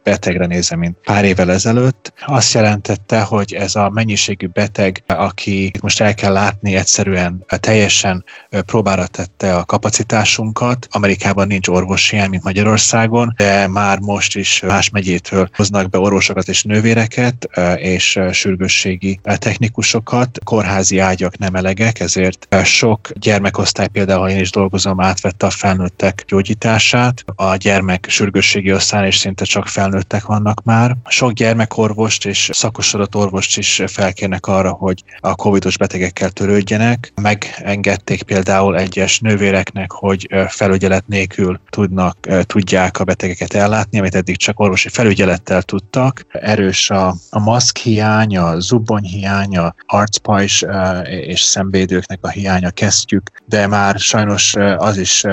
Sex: male